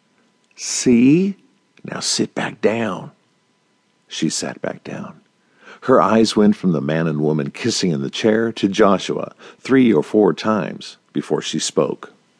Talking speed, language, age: 145 wpm, English, 50-69